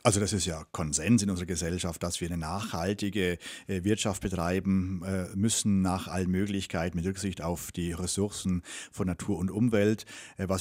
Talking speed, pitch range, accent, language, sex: 175 wpm, 90-110 Hz, German, German, male